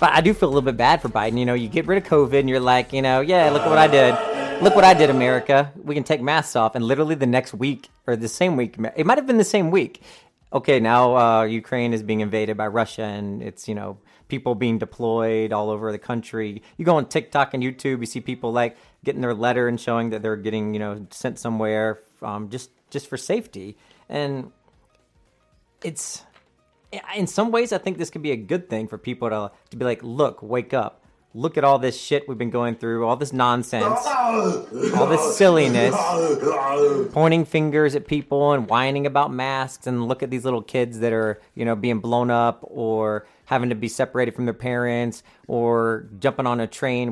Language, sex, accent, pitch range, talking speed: English, male, American, 115-140 Hz, 215 wpm